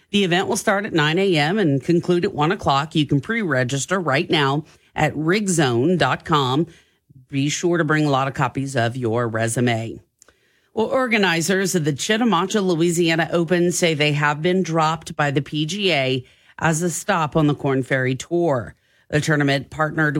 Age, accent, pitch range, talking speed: 40-59, American, 145-185 Hz, 165 wpm